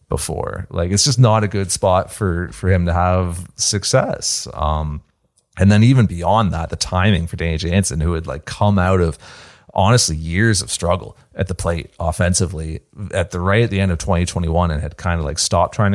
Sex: male